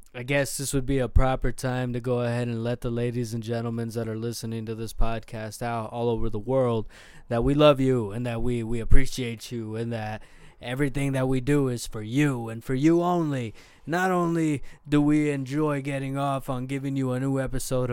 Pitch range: 120-150 Hz